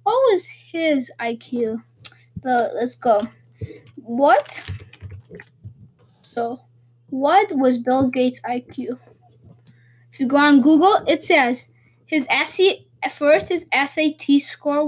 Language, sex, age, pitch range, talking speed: English, female, 20-39, 230-295 Hz, 115 wpm